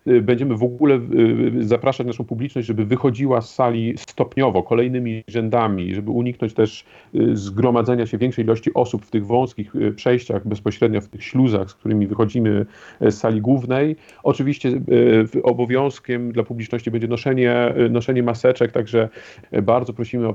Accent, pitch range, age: native, 110-125 Hz, 40-59